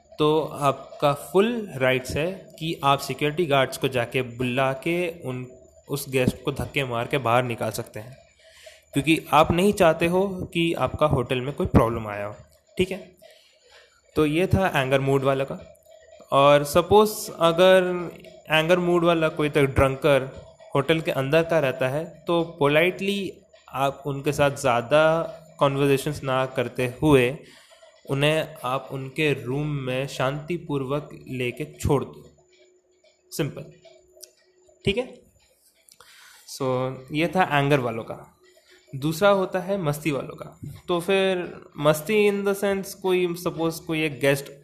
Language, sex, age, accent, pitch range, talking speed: Hindi, male, 20-39, native, 135-180 Hz, 145 wpm